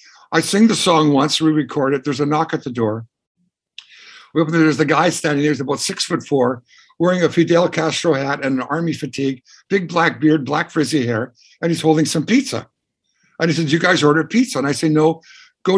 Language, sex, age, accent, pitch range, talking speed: English, male, 60-79, American, 140-165 Hz, 225 wpm